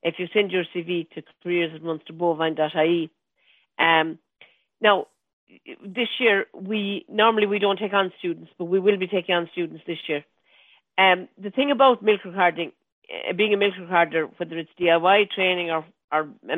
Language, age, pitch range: English, 50-69, 170-215 Hz